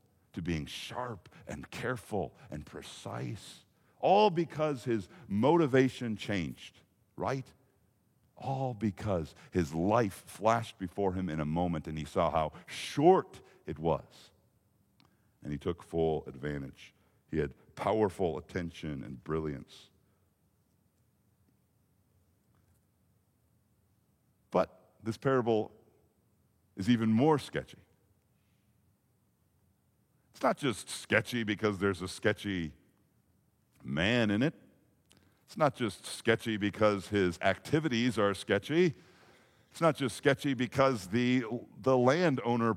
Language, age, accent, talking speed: English, 50-69, American, 105 wpm